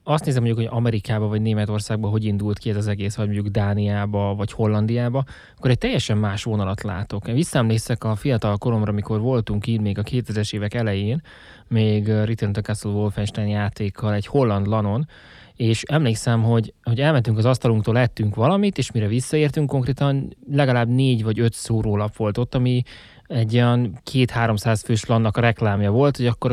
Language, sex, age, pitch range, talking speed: Hungarian, male, 20-39, 110-125 Hz, 165 wpm